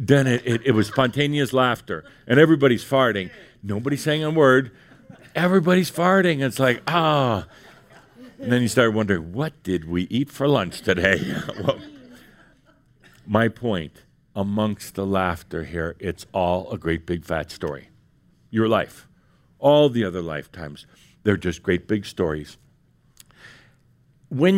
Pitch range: 95-140 Hz